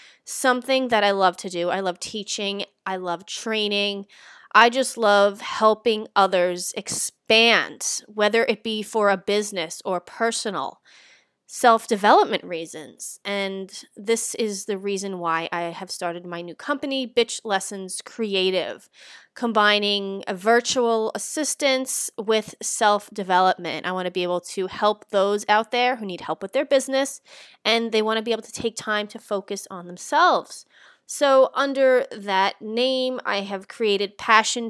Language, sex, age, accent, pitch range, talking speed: English, female, 20-39, American, 195-240 Hz, 145 wpm